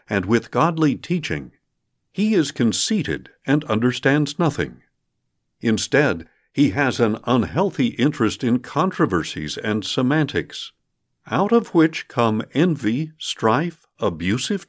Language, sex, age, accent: English, male, 50-69, American